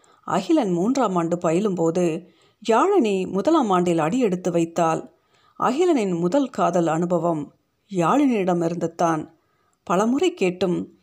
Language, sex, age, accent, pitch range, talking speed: Tamil, female, 50-69, native, 170-225 Hz, 90 wpm